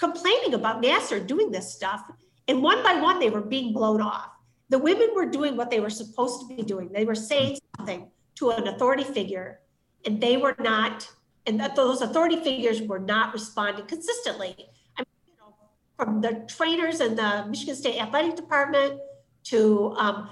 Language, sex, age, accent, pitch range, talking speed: English, female, 50-69, American, 210-295 Hz, 185 wpm